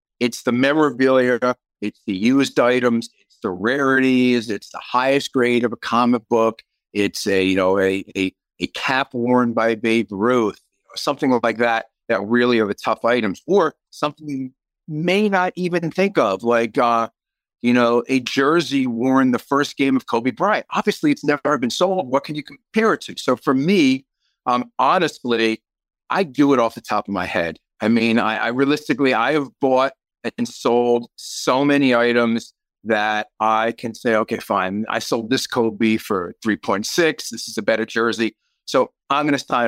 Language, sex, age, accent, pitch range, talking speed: English, male, 50-69, American, 115-140 Hz, 180 wpm